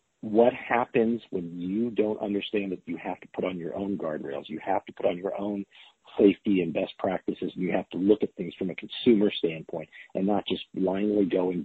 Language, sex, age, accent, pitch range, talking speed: English, male, 50-69, American, 95-110 Hz, 220 wpm